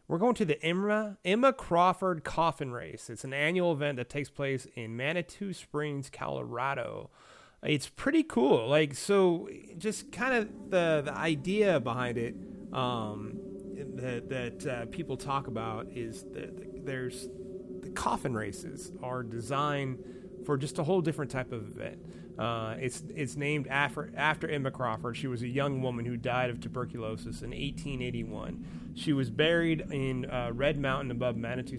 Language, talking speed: English, 160 wpm